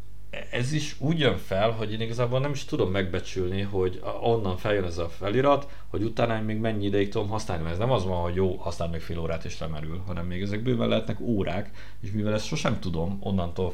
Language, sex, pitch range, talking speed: Hungarian, male, 90-110 Hz, 210 wpm